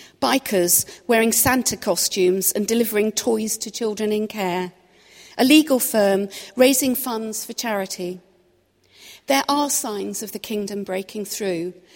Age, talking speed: 40-59, 130 wpm